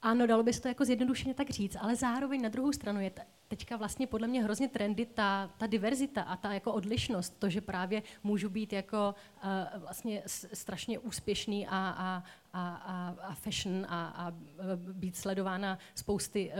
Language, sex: Czech, female